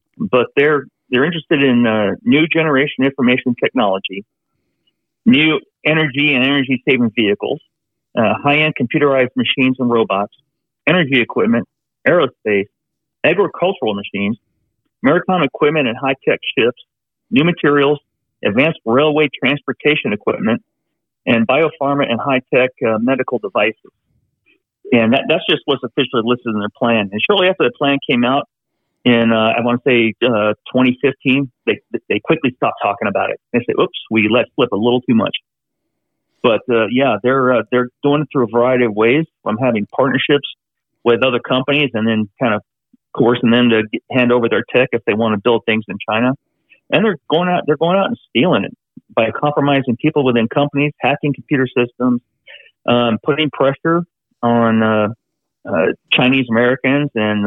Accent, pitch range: American, 115-145 Hz